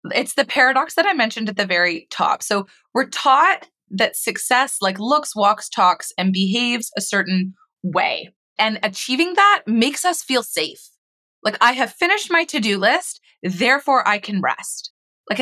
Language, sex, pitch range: English, female, 190-280 Hz